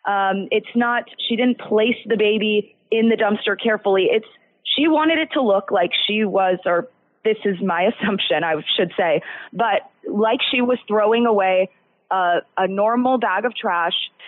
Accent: American